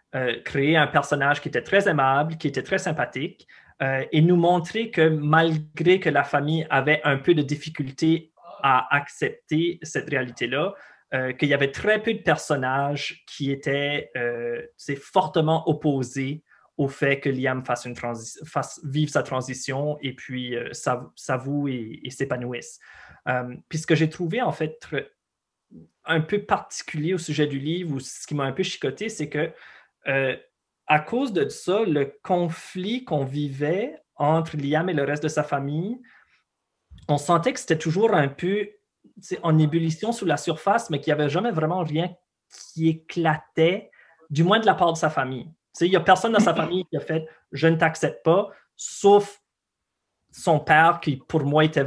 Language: French